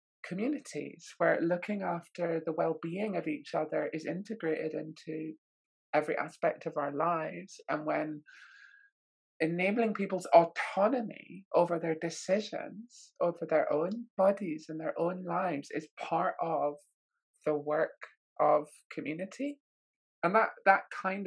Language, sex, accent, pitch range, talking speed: English, male, British, 155-190 Hz, 125 wpm